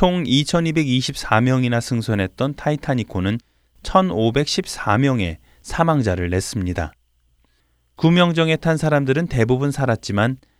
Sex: male